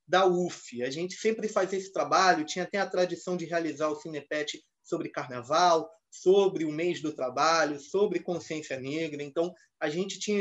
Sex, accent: male, Brazilian